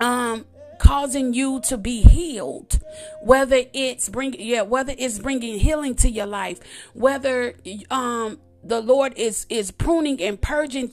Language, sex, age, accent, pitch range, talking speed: English, female, 40-59, American, 230-275 Hz, 145 wpm